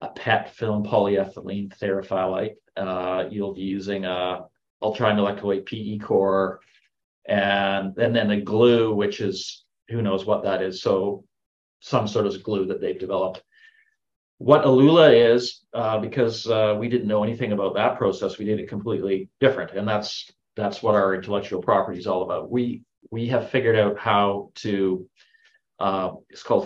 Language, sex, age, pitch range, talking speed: English, male, 40-59, 100-125 Hz, 160 wpm